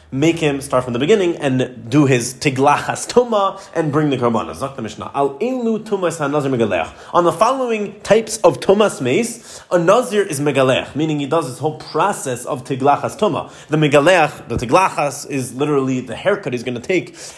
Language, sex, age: English, male, 30-49